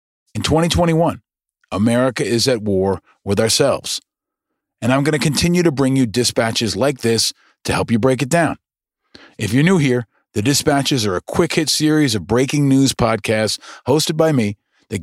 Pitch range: 115-150 Hz